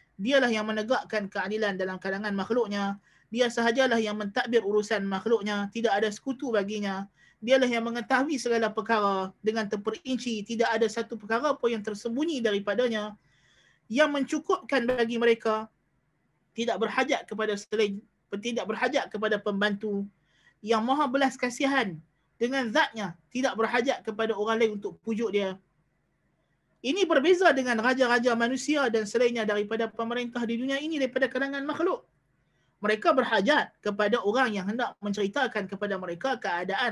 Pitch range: 210-265 Hz